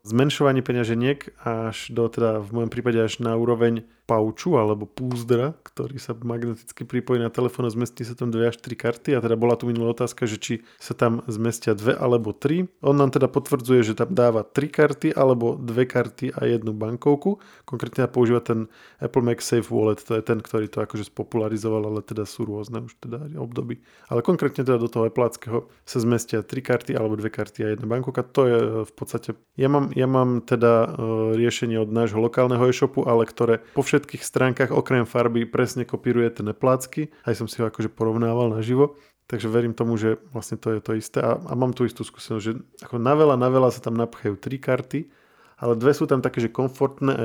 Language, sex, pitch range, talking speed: Slovak, male, 110-130 Hz, 205 wpm